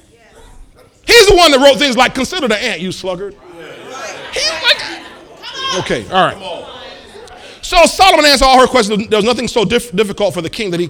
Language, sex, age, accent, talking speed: English, male, 40-59, American, 170 wpm